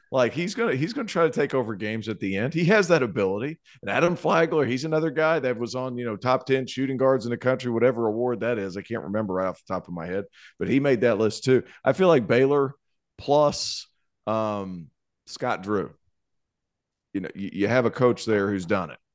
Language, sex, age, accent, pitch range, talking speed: English, male, 40-59, American, 100-125 Hz, 230 wpm